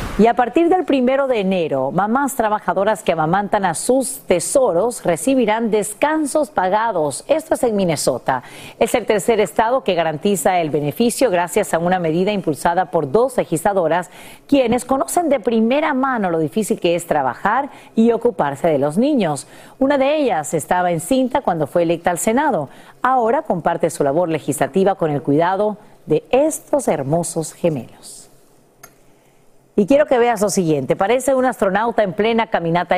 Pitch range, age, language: 175-260 Hz, 40-59, Spanish